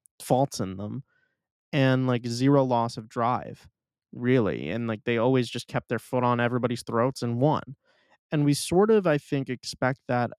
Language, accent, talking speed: English, American, 180 wpm